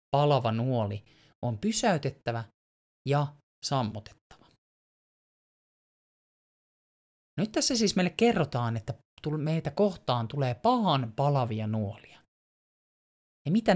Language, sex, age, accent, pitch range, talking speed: Finnish, male, 30-49, native, 110-150 Hz, 85 wpm